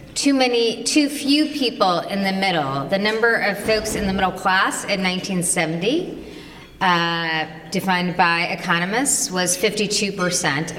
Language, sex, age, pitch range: English, female, 30-49, 175-225 Hz